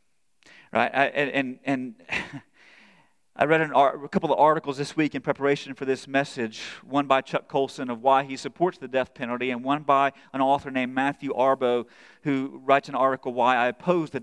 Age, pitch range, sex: 40-59, 130-150 Hz, male